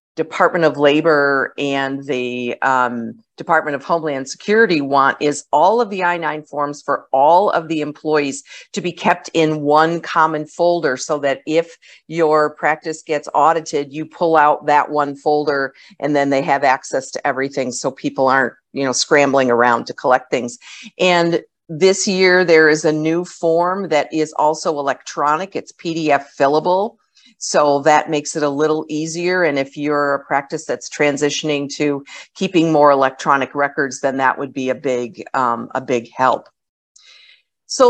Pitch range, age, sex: 140-170 Hz, 50-69, female